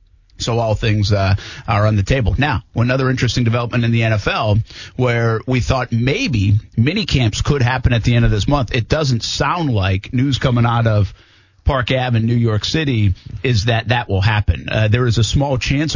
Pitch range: 105-125 Hz